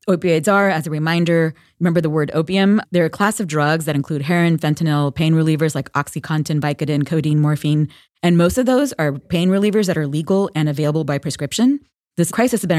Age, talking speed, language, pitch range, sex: 30-49, 200 wpm, English, 150-185 Hz, female